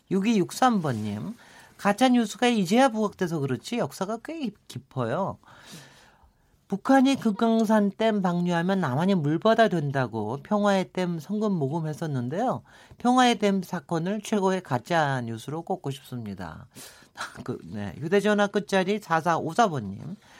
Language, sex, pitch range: Korean, male, 145-230 Hz